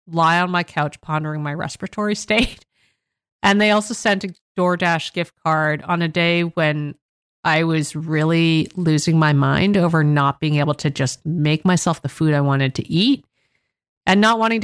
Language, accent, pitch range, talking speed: English, American, 155-205 Hz, 175 wpm